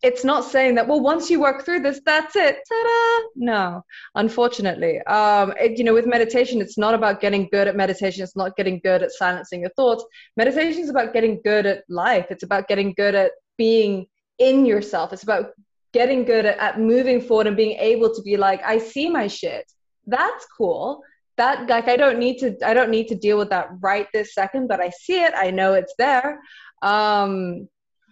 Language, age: English, 20-39